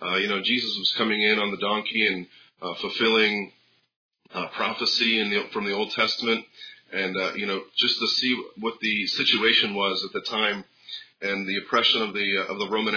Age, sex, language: 40-59, male, English